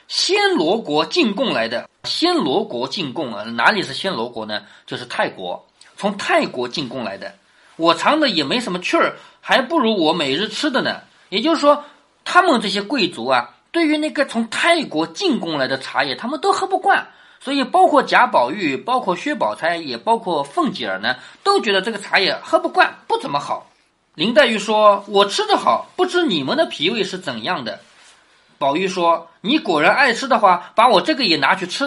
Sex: male